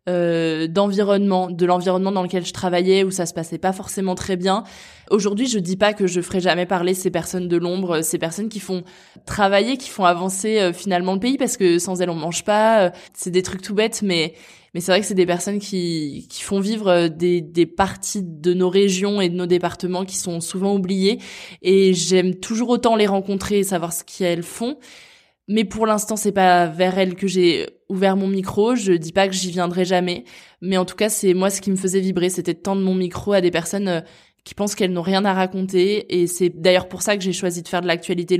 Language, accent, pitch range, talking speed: French, French, 175-195 Hz, 230 wpm